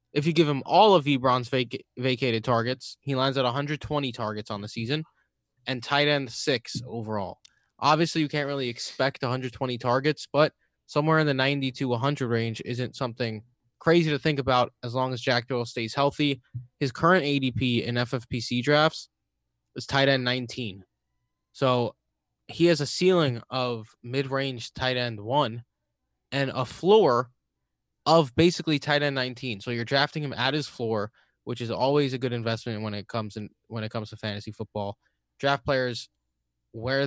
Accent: American